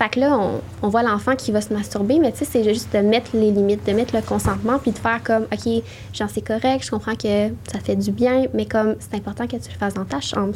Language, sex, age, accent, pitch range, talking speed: French, female, 10-29, Canadian, 205-235 Hz, 285 wpm